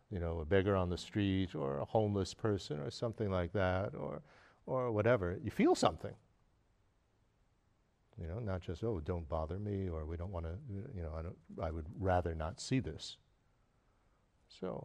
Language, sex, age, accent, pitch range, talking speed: English, male, 60-79, American, 95-125 Hz, 180 wpm